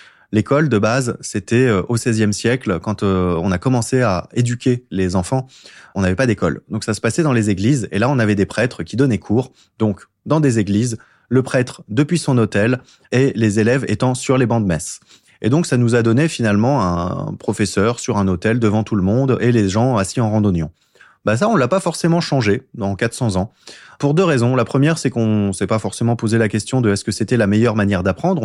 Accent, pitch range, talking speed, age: French, 105-140 Hz, 225 wpm, 20-39